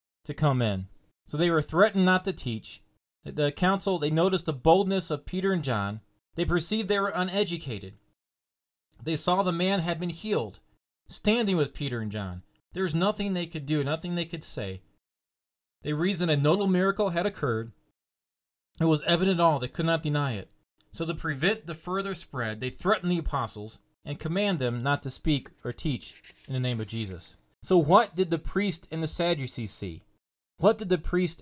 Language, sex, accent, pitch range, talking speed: English, male, American, 110-170 Hz, 190 wpm